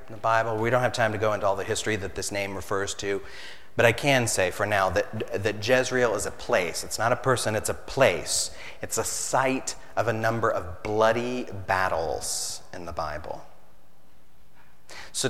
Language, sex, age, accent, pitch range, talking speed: English, male, 30-49, American, 100-140 Hz, 195 wpm